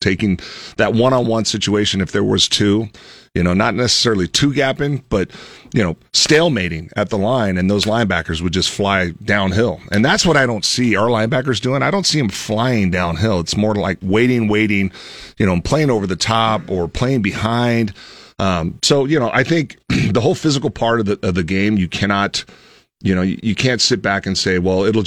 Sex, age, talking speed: male, 40-59, 205 wpm